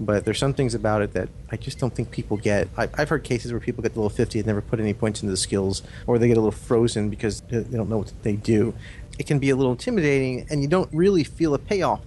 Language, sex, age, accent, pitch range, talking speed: English, male, 40-59, American, 100-120 Hz, 285 wpm